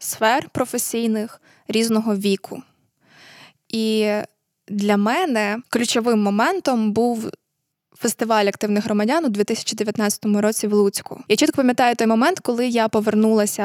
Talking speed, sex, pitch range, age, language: 115 wpm, female, 210-240 Hz, 20-39, Ukrainian